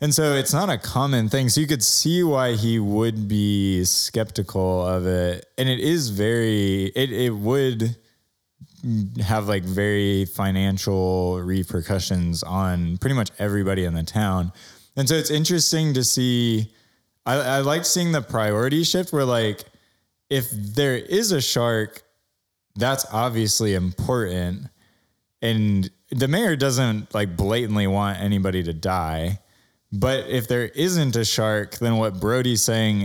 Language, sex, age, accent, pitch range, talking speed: English, male, 20-39, American, 95-120 Hz, 145 wpm